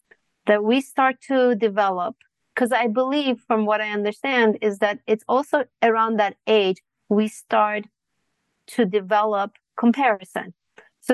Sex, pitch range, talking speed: female, 200-225 Hz, 135 wpm